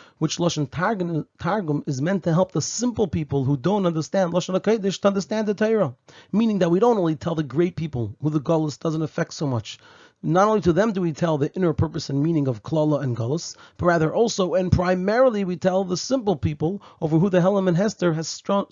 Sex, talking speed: male, 220 wpm